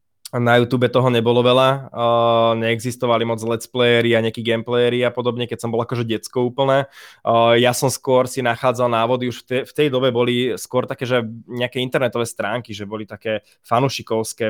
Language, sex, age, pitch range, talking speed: Slovak, male, 20-39, 115-130 Hz, 180 wpm